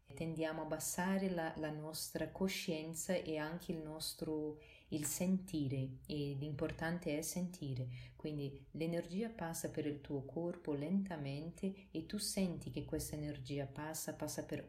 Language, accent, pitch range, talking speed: Italian, native, 145-175 Hz, 140 wpm